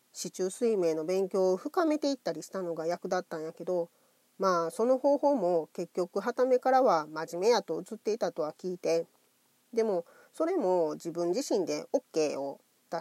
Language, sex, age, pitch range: Japanese, female, 40-59, 170-250 Hz